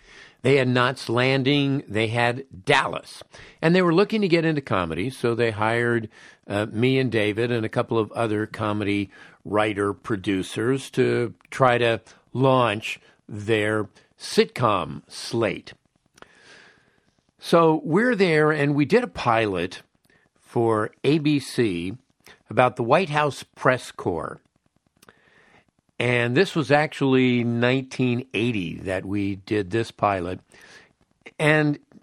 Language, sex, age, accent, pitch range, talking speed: English, male, 50-69, American, 115-160 Hz, 120 wpm